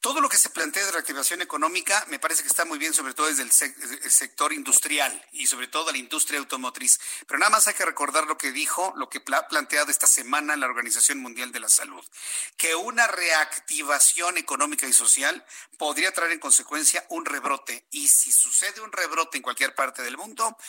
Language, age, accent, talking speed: Spanish, 50-69, Mexican, 200 wpm